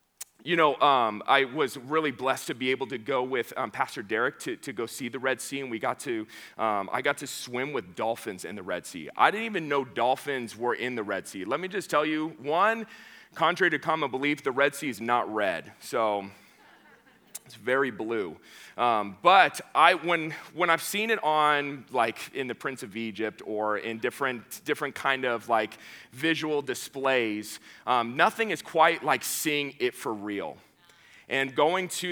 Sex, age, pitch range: male, 30-49, 125-160 Hz